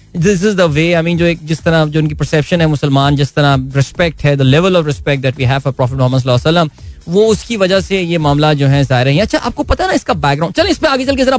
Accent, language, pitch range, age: native, Hindi, 145-190 Hz, 20-39